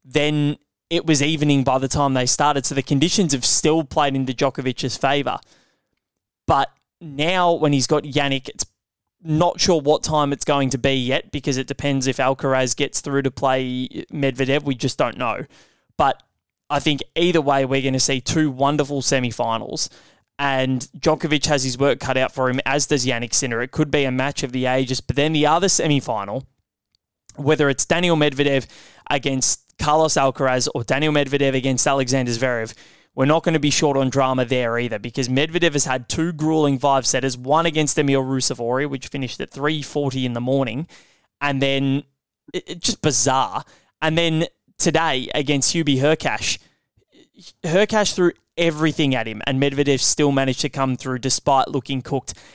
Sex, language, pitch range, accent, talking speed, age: male, English, 130-150 Hz, Australian, 175 wpm, 20-39